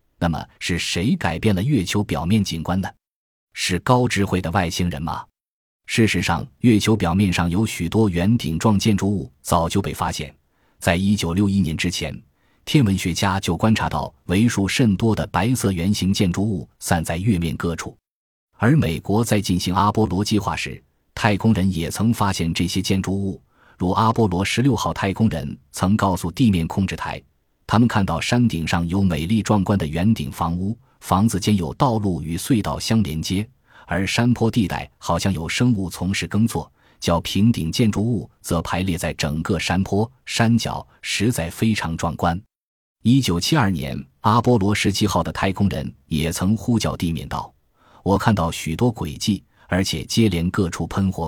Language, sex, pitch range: Chinese, male, 85-110 Hz